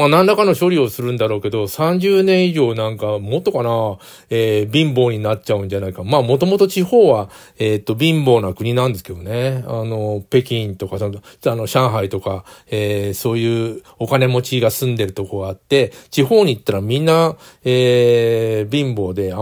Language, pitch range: Japanese, 105-140 Hz